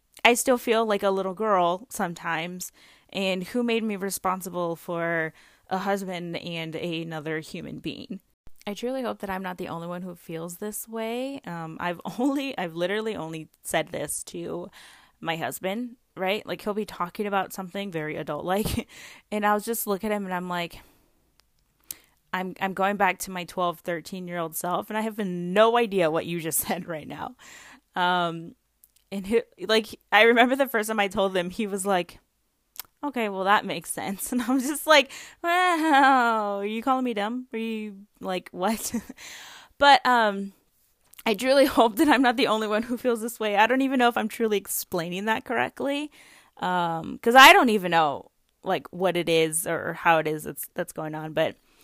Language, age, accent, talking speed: English, 10-29, American, 190 wpm